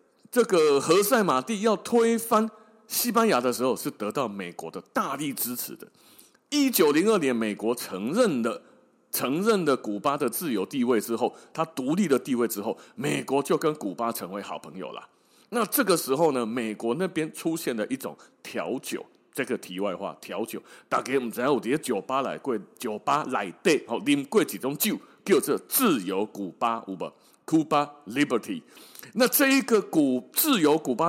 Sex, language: male, Chinese